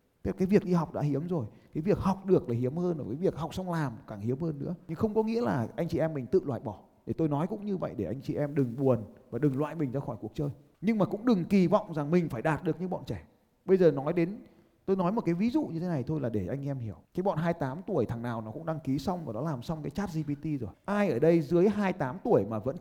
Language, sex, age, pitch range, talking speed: Vietnamese, male, 20-39, 120-180 Hz, 310 wpm